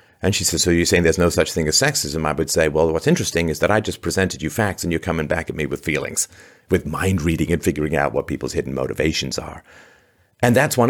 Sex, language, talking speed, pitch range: male, English, 260 wpm, 80-100 Hz